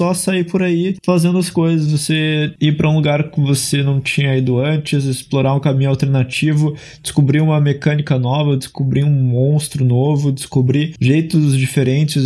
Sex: male